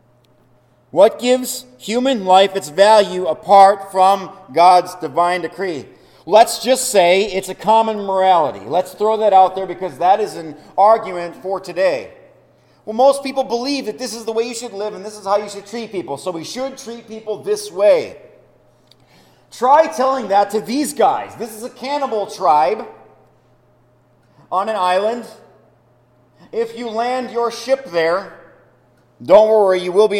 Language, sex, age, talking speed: English, male, 40-59, 165 wpm